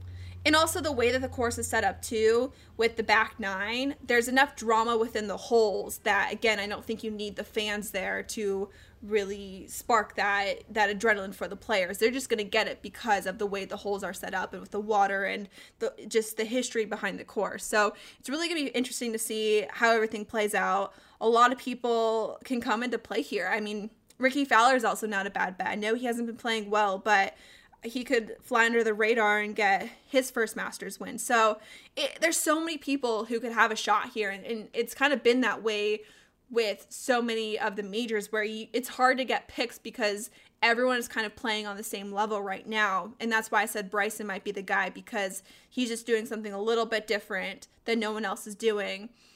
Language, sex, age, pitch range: English, female, 20-39, 205-235 Hz